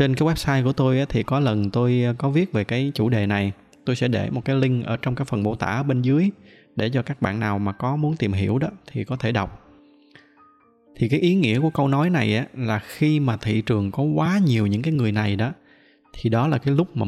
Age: 20-39